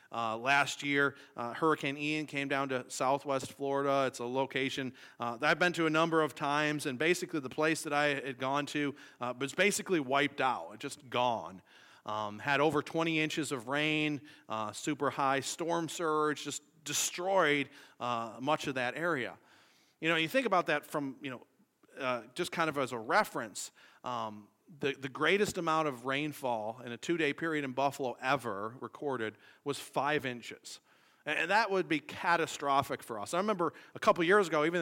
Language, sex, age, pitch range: English, male, 40-59, 130-155 Hz